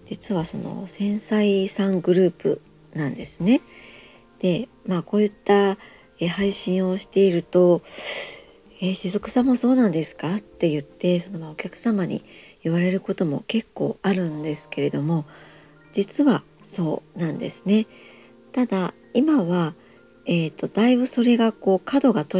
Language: Japanese